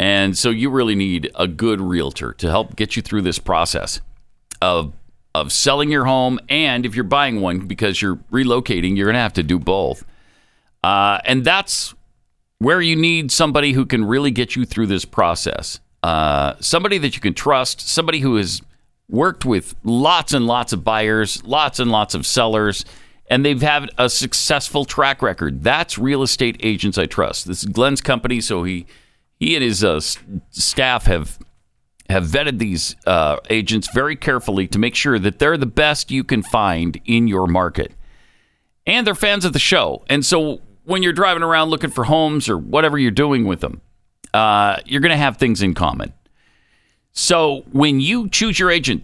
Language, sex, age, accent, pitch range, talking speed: English, male, 50-69, American, 100-145 Hz, 185 wpm